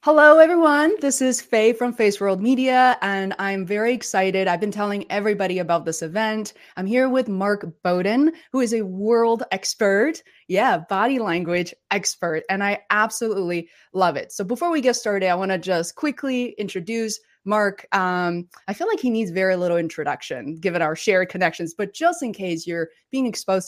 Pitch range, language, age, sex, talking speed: 185-240 Hz, English, 20-39, female, 180 wpm